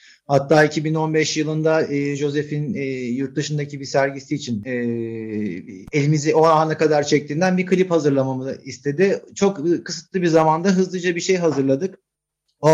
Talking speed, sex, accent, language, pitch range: 125 wpm, male, native, Turkish, 145-180 Hz